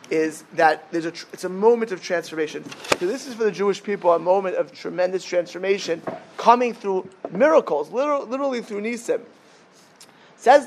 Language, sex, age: English, male, 30-49